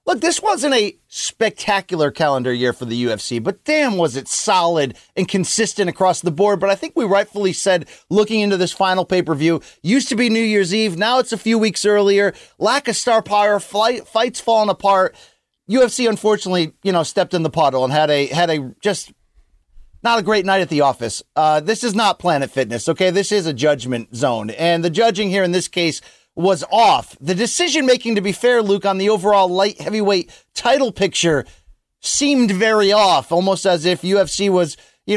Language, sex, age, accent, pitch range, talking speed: English, male, 30-49, American, 170-220 Hz, 195 wpm